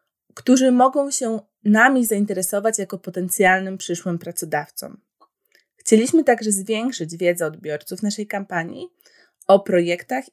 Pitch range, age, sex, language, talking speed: 175-225 Hz, 20-39, female, Polish, 105 wpm